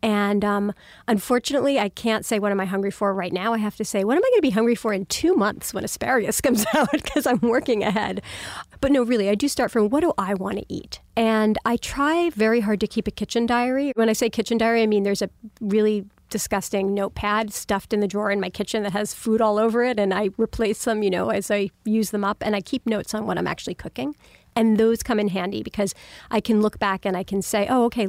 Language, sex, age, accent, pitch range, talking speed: English, female, 40-59, American, 200-235 Hz, 255 wpm